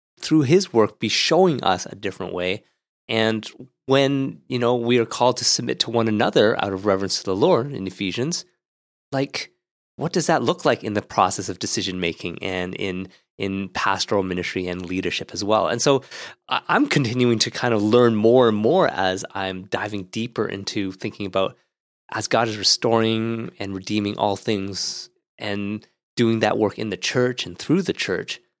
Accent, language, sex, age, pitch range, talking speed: American, English, male, 30-49, 100-130 Hz, 180 wpm